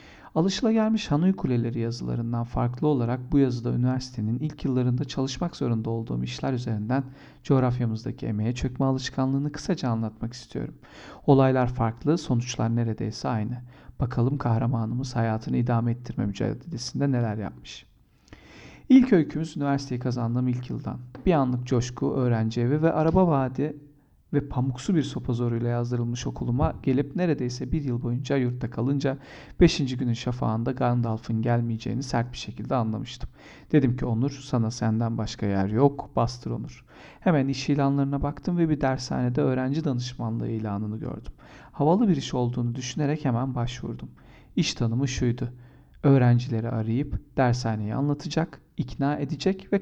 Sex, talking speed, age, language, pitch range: male, 135 wpm, 40-59, Turkish, 120-140 Hz